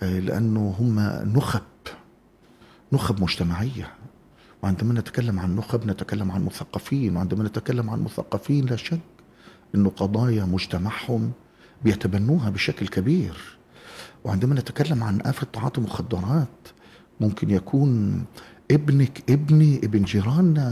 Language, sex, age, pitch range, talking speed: Arabic, male, 50-69, 110-180 Hz, 105 wpm